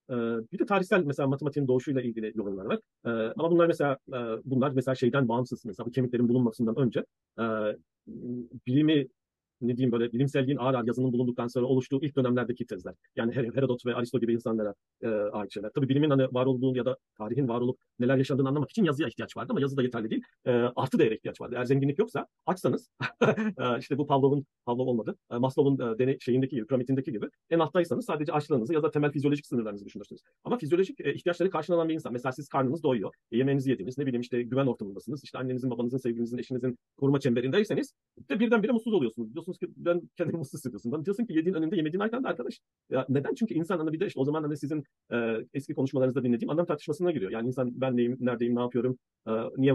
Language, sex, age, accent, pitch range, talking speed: Turkish, male, 40-59, native, 120-150 Hz, 195 wpm